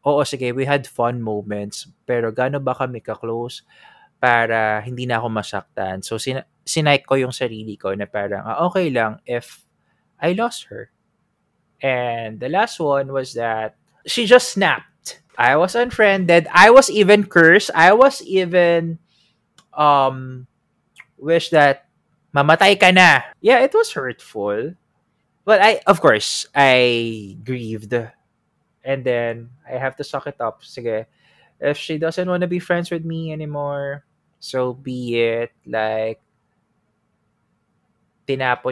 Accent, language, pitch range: native, Filipino, 115-155 Hz